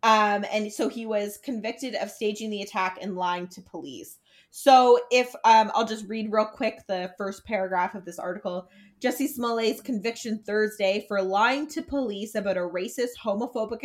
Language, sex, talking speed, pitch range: English, female, 175 wpm, 195-240 Hz